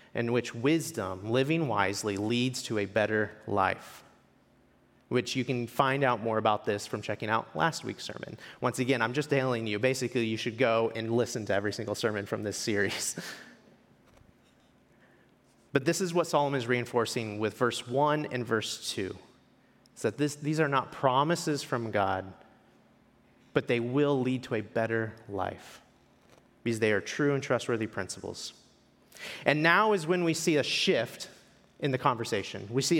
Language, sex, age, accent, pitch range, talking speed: English, male, 30-49, American, 115-155 Hz, 170 wpm